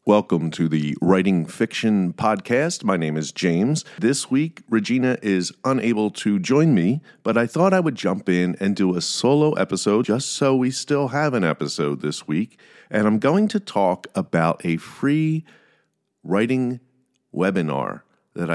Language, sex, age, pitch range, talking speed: English, male, 50-69, 90-120 Hz, 160 wpm